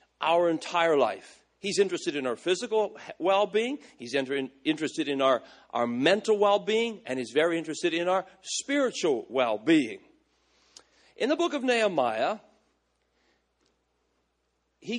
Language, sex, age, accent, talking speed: English, male, 50-69, American, 120 wpm